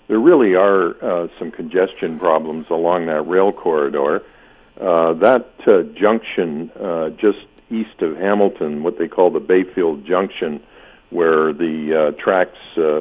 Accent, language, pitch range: American, English, 80-105 Hz